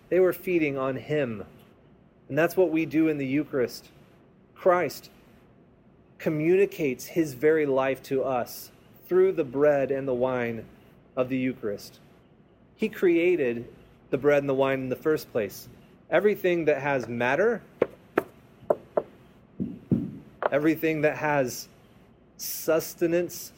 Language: English